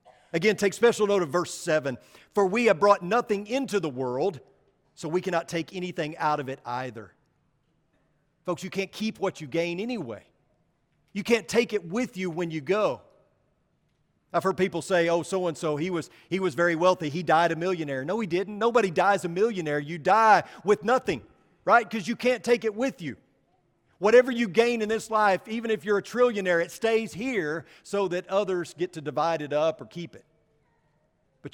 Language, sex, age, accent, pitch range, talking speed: English, male, 40-59, American, 150-210 Hz, 195 wpm